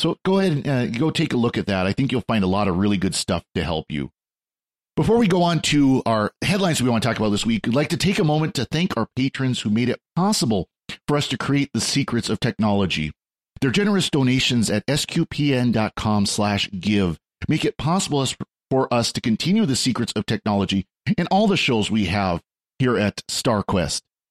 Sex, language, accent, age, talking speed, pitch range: male, English, American, 40-59, 215 wpm, 105-150 Hz